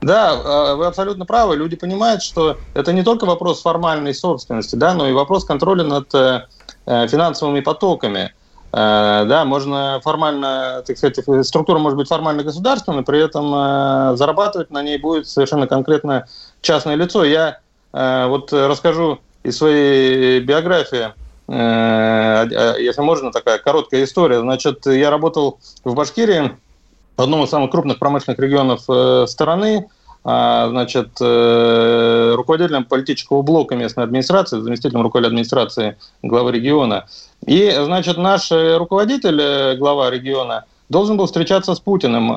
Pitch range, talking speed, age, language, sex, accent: 130-170 Hz, 130 wpm, 30-49, Russian, male, native